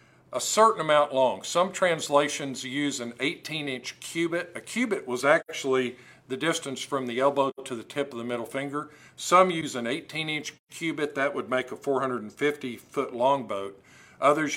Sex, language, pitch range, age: male, English, 120-145 Hz, 50-69